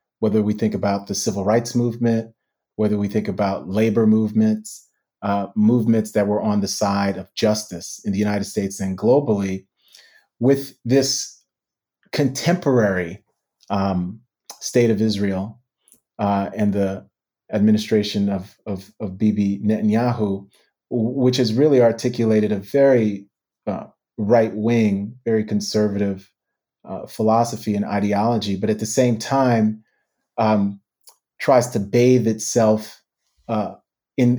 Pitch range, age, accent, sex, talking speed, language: 100-115 Hz, 30-49, American, male, 125 wpm, English